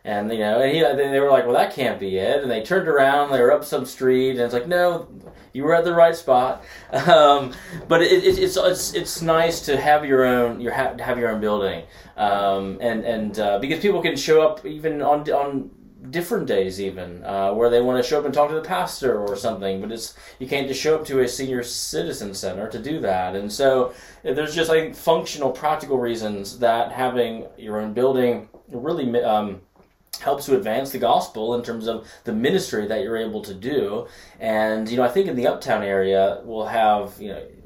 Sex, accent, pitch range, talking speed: male, American, 105-140 Hz, 220 wpm